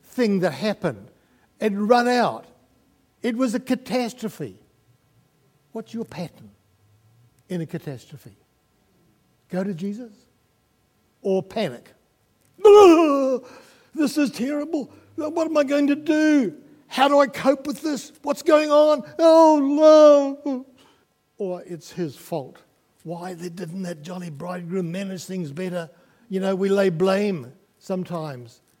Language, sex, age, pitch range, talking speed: English, male, 60-79, 150-240 Hz, 125 wpm